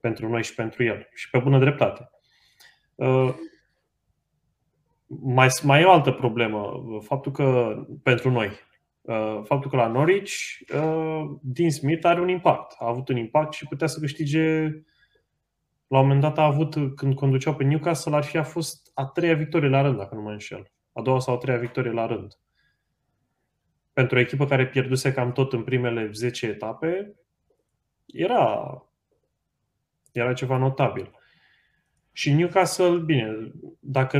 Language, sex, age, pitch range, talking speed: Romanian, male, 20-39, 115-145 Hz, 160 wpm